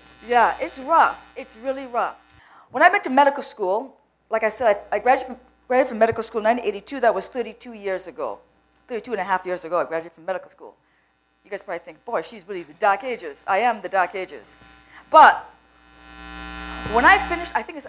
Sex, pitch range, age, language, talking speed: female, 190-275 Hz, 40-59, English, 210 wpm